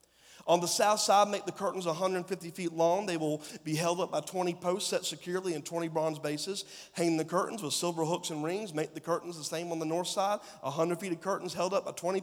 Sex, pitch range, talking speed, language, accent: male, 160-195 Hz, 240 wpm, English, American